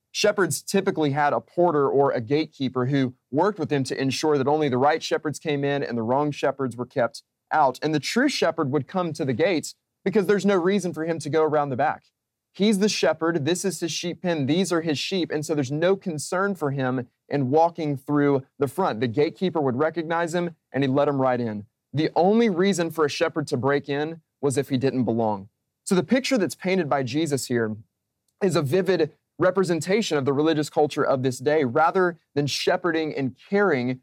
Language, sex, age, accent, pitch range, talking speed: English, male, 30-49, American, 130-165 Hz, 215 wpm